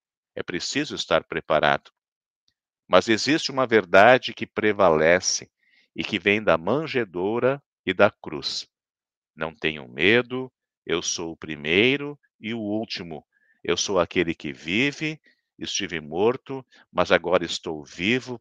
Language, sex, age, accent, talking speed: Portuguese, male, 50-69, Brazilian, 125 wpm